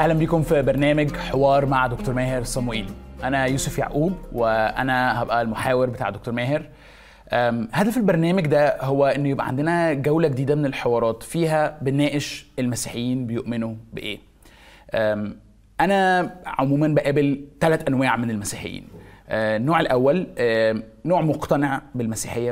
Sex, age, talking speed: male, 20-39, 125 wpm